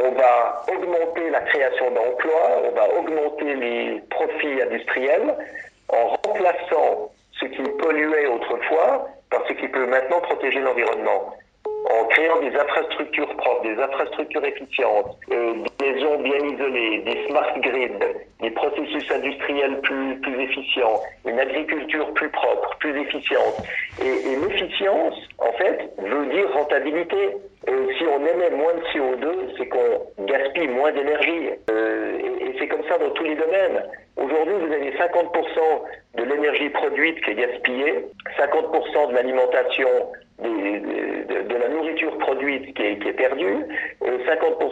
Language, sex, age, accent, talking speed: French, male, 50-69, French, 140 wpm